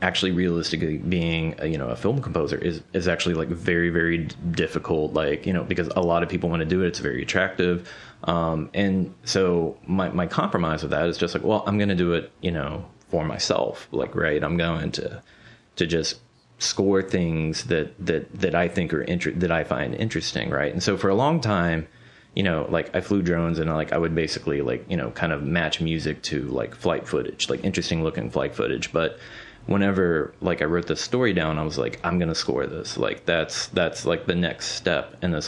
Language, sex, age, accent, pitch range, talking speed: English, male, 30-49, American, 85-95 Hz, 220 wpm